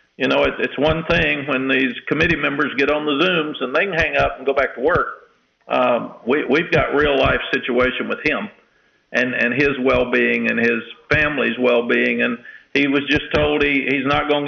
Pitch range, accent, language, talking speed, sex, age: 130-150 Hz, American, English, 205 wpm, male, 50-69